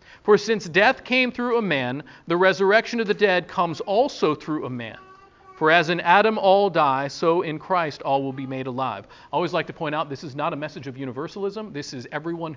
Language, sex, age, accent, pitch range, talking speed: English, male, 50-69, American, 140-195 Hz, 225 wpm